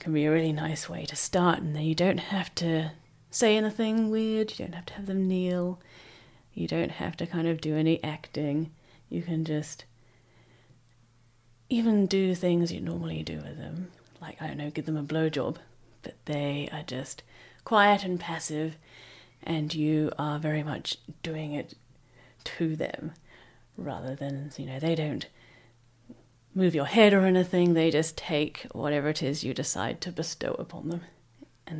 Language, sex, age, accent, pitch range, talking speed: English, female, 30-49, British, 125-170 Hz, 175 wpm